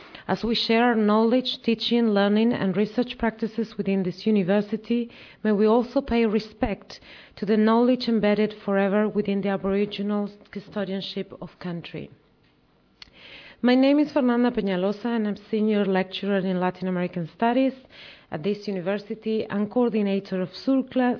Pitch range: 195-230 Hz